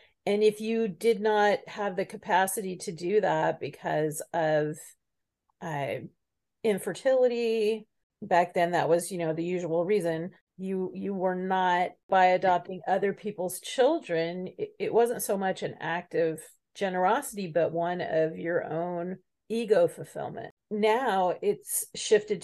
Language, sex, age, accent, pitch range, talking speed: English, female, 40-59, American, 175-215 Hz, 140 wpm